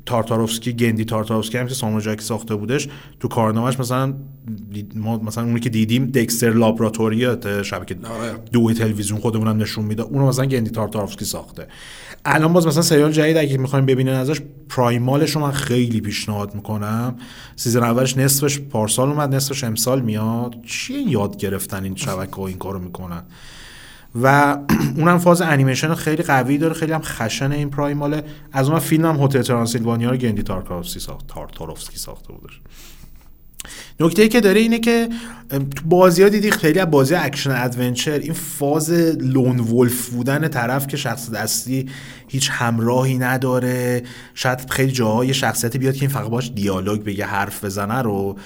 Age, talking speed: 30-49, 150 wpm